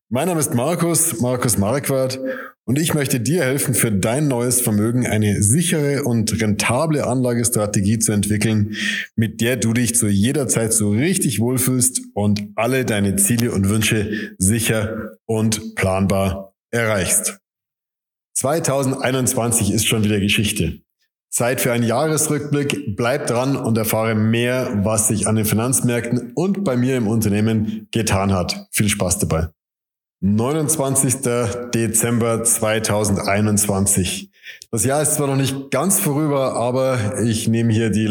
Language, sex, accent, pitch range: German, male, German, 105-130 Hz